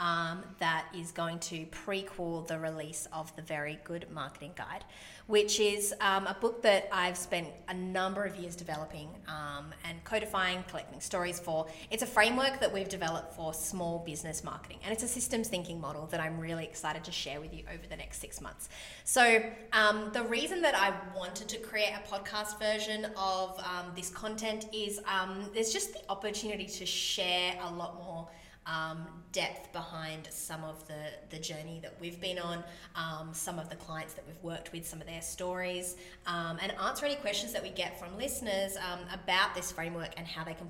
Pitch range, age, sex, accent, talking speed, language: 165-210 Hz, 20-39, female, Australian, 195 wpm, English